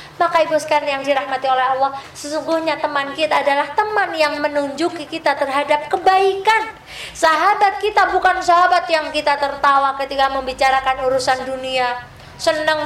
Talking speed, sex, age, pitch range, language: 130 wpm, female, 20-39, 260-345 Hz, Indonesian